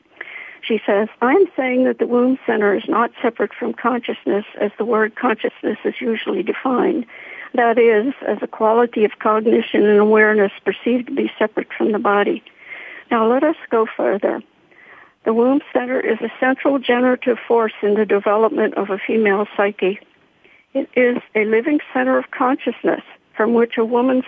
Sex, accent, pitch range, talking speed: female, American, 210-255 Hz, 165 wpm